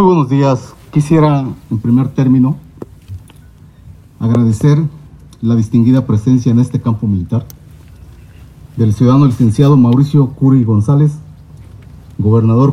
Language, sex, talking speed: Spanish, male, 105 wpm